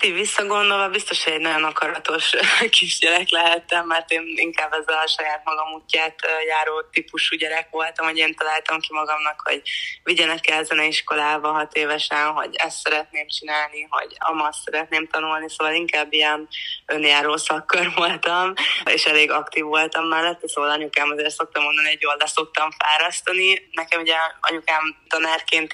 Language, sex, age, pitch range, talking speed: Hungarian, female, 20-39, 150-165 Hz, 145 wpm